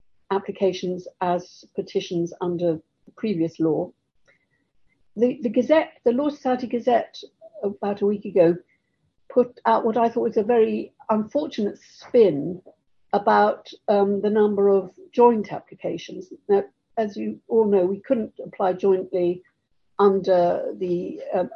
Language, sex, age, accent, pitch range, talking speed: English, female, 60-79, British, 195-235 Hz, 130 wpm